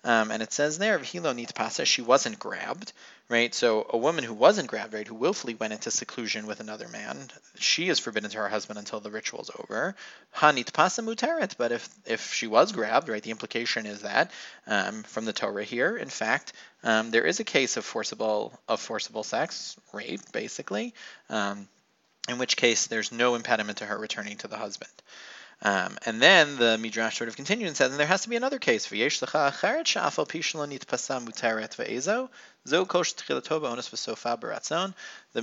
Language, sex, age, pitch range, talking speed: English, male, 30-49, 110-145 Hz, 170 wpm